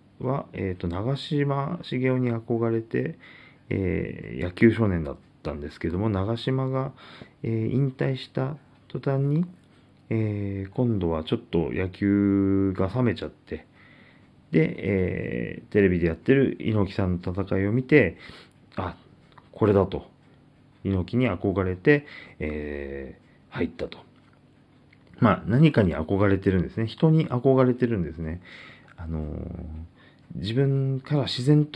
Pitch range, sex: 90-130 Hz, male